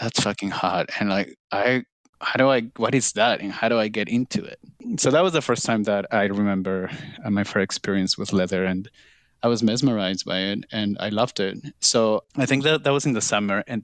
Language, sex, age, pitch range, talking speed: English, male, 30-49, 105-125 Hz, 230 wpm